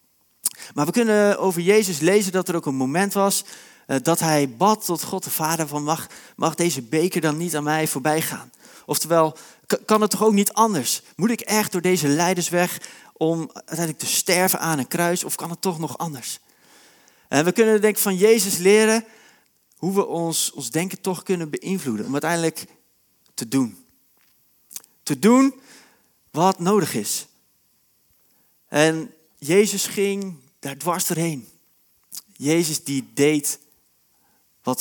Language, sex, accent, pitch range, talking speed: Dutch, male, Dutch, 145-195 Hz, 155 wpm